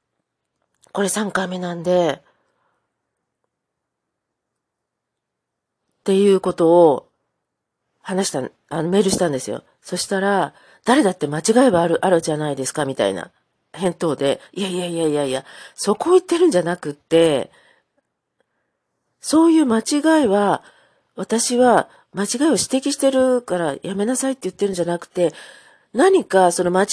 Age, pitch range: 40-59, 165-235 Hz